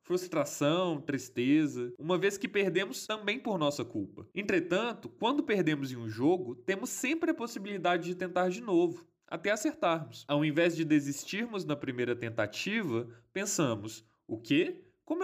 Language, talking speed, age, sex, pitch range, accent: Portuguese, 145 wpm, 20-39, male, 135-200 Hz, Brazilian